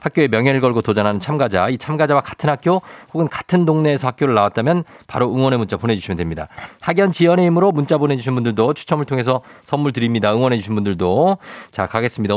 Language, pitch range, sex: Korean, 95-150 Hz, male